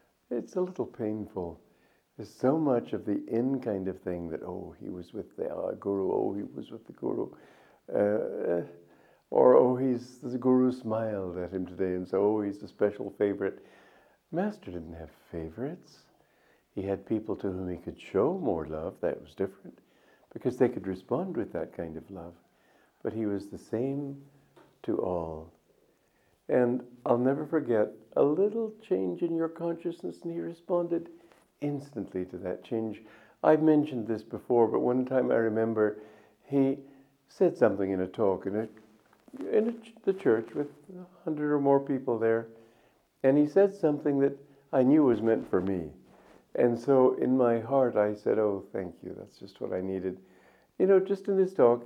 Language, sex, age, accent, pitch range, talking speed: English, male, 60-79, American, 95-140 Hz, 175 wpm